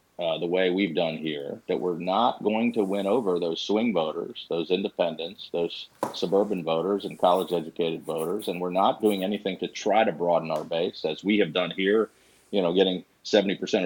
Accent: American